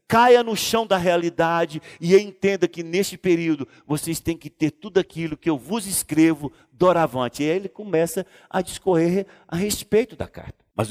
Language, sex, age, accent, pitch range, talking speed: Portuguese, male, 50-69, Brazilian, 120-185 Hz, 175 wpm